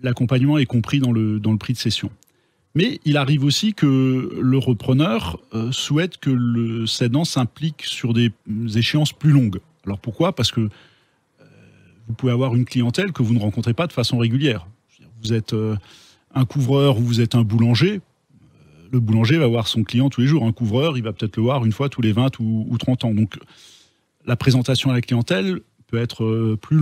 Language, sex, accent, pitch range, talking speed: French, male, French, 110-135 Hz, 190 wpm